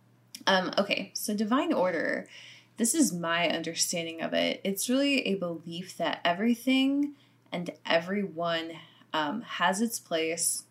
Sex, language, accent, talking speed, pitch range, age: female, English, American, 130 wpm, 165-230 Hz, 20-39